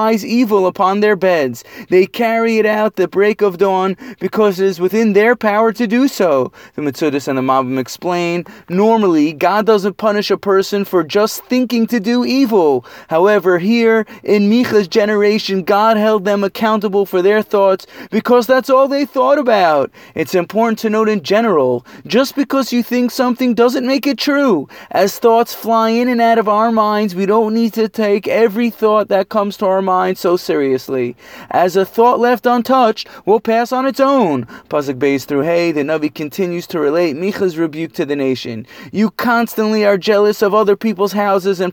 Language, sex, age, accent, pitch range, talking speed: English, male, 30-49, American, 190-230 Hz, 185 wpm